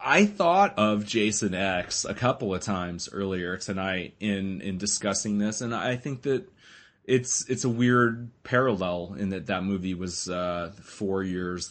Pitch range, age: 100-120 Hz, 30-49